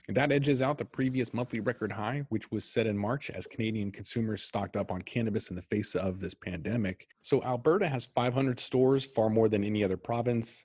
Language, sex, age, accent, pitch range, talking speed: English, male, 40-59, American, 95-120 Hz, 215 wpm